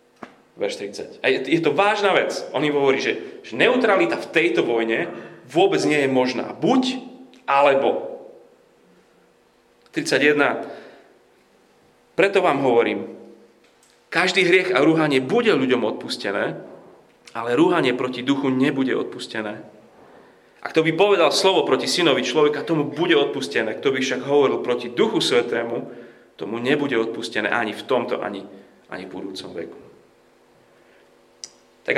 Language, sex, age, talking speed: Slovak, male, 30-49, 125 wpm